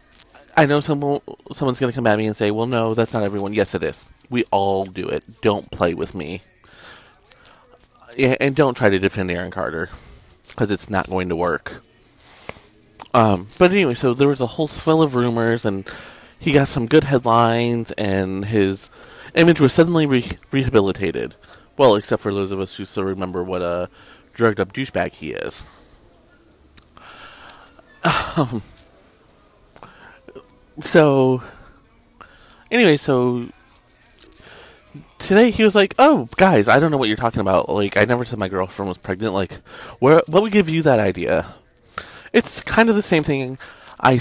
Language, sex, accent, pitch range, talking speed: English, male, American, 100-150 Hz, 160 wpm